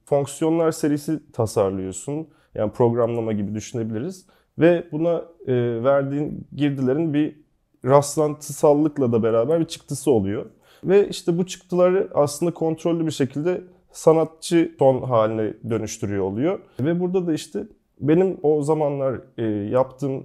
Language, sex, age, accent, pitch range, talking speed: Turkish, male, 30-49, native, 120-155 Hz, 115 wpm